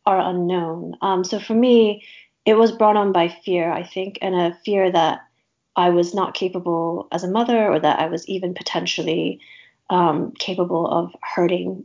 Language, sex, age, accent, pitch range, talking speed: English, female, 30-49, American, 175-200 Hz, 175 wpm